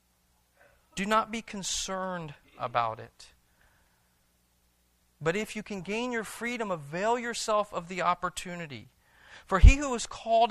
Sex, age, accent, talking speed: male, 40-59, American, 130 wpm